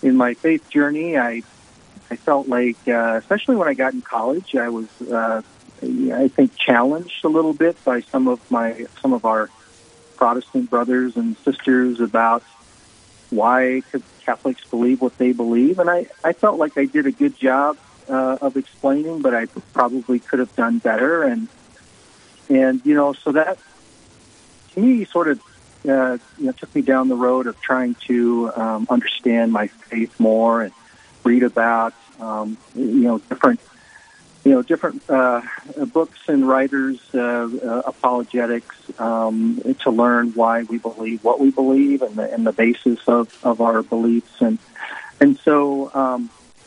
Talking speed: 165 wpm